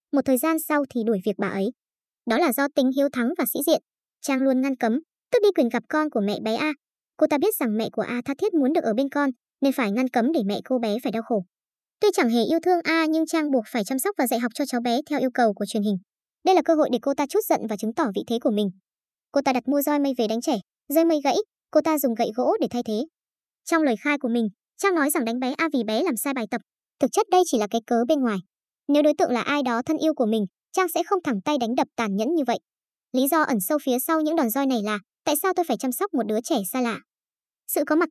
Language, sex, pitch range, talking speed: Vietnamese, male, 235-315 Hz, 295 wpm